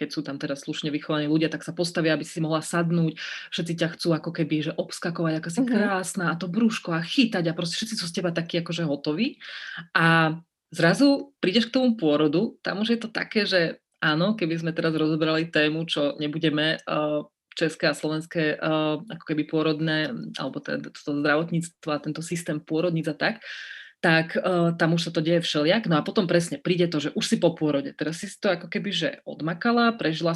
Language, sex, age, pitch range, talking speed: Slovak, female, 30-49, 155-175 Hz, 195 wpm